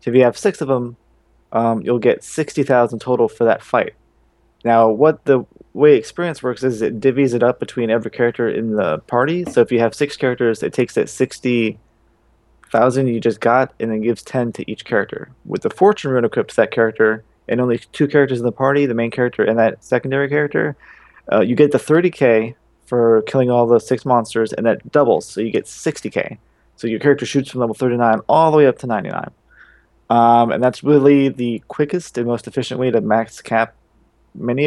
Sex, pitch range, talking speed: male, 115-135 Hz, 210 wpm